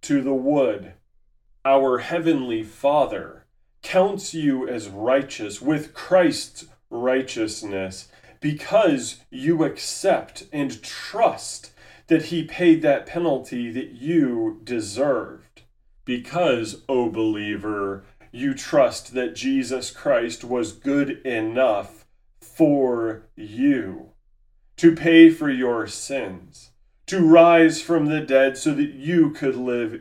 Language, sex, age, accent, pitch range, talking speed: English, male, 30-49, American, 125-165 Hz, 110 wpm